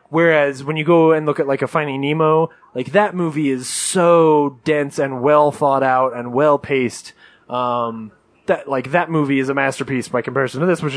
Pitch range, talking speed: 145-215 Hz, 200 wpm